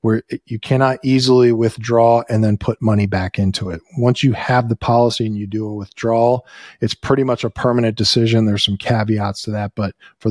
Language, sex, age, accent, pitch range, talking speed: English, male, 40-59, American, 105-125 Hz, 205 wpm